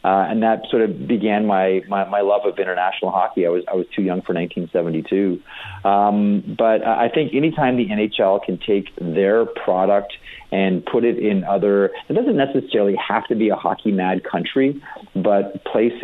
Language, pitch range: English, 95-110 Hz